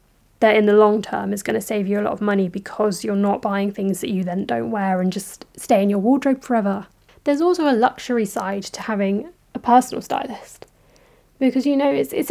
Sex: female